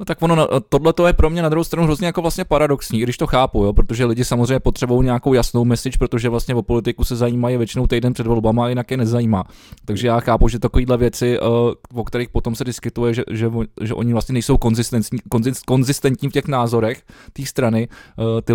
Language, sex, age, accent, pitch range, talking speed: Czech, male, 20-39, native, 115-140 Hz, 215 wpm